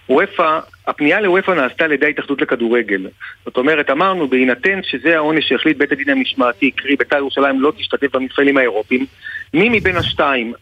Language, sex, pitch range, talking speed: Hebrew, male, 140-210 Hz, 155 wpm